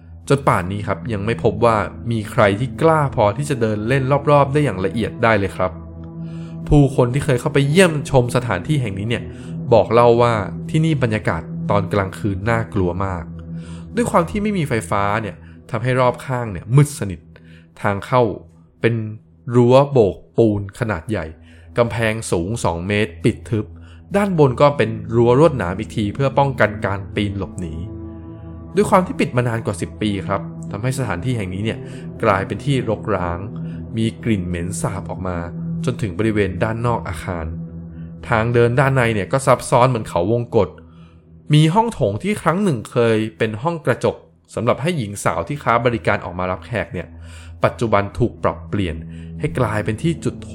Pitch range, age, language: 90-130 Hz, 20-39, Thai